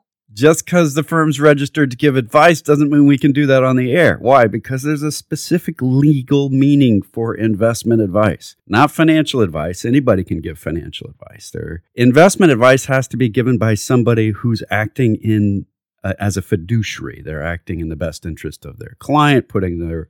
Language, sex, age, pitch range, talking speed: English, male, 40-59, 95-135 Hz, 180 wpm